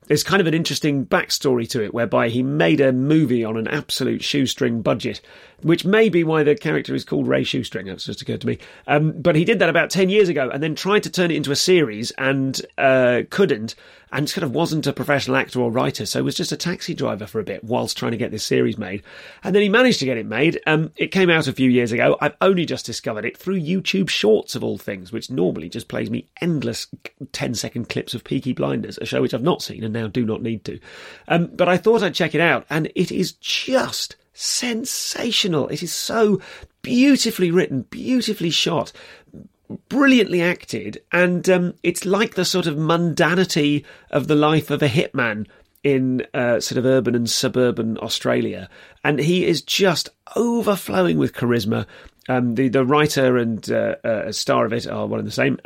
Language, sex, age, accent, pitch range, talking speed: English, male, 30-49, British, 125-180 Hz, 210 wpm